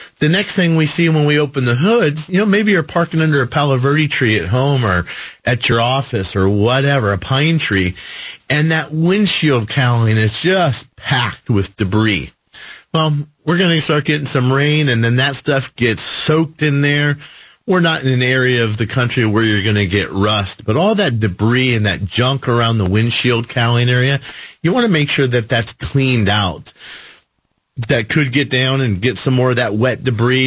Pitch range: 115-150 Hz